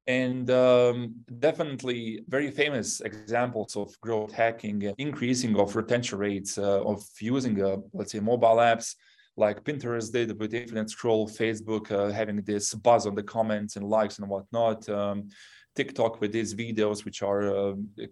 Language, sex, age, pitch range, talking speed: English, male, 20-39, 105-125 Hz, 160 wpm